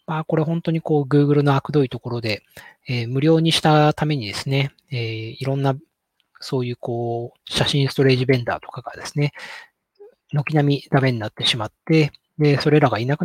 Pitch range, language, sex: 125-150 Hz, Japanese, male